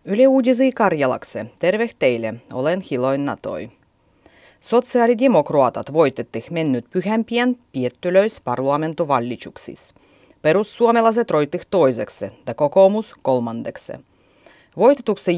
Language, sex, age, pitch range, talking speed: Finnish, female, 30-49, 140-225 Hz, 80 wpm